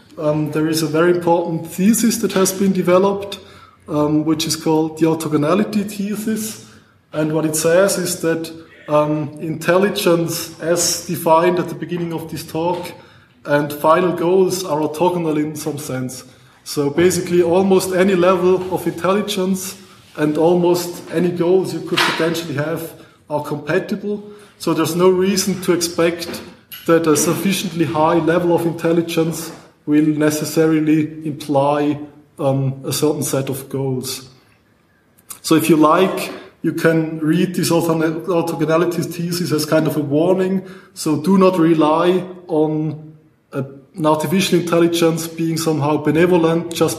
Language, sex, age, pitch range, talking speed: English, male, 20-39, 145-170 Hz, 140 wpm